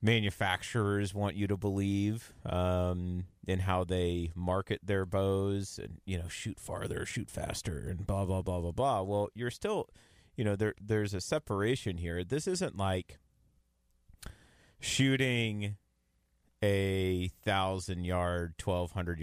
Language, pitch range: English, 85-100 Hz